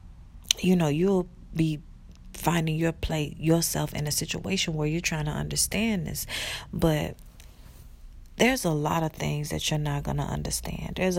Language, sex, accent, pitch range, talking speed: English, female, American, 145-170 Hz, 160 wpm